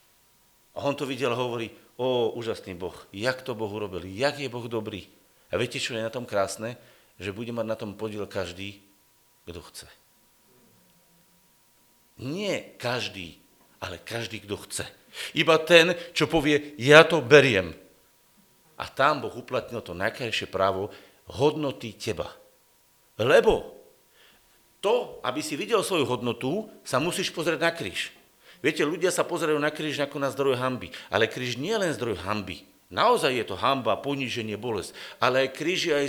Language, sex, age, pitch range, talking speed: Slovak, male, 50-69, 105-165 Hz, 155 wpm